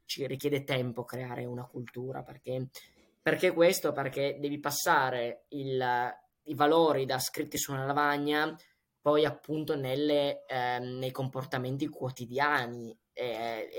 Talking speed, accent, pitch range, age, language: 120 wpm, native, 130-145 Hz, 20-39, Italian